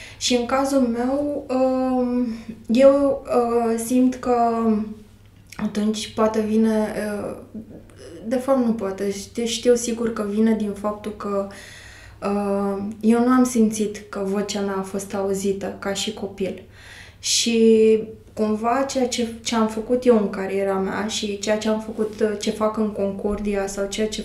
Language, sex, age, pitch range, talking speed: Romanian, female, 20-39, 200-225 Hz, 145 wpm